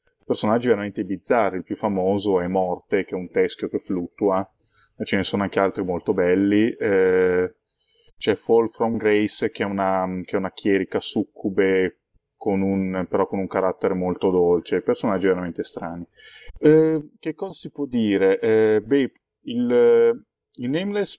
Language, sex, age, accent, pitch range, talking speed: Italian, male, 30-49, native, 95-120 Hz, 150 wpm